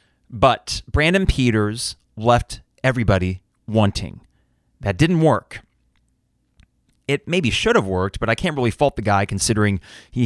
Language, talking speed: English, 135 wpm